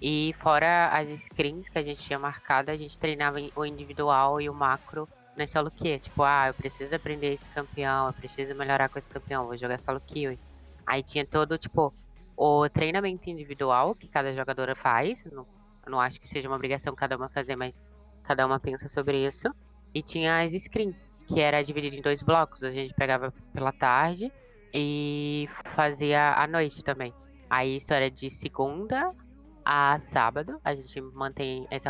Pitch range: 135-155 Hz